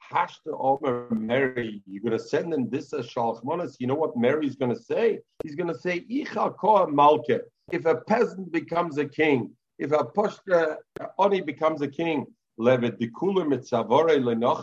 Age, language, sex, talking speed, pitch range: 50-69, English, male, 130 wpm, 140-195 Hz